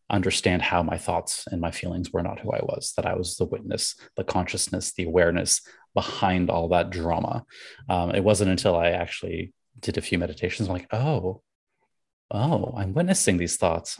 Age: 20-39